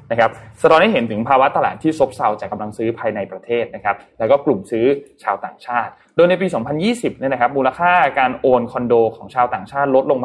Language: Thai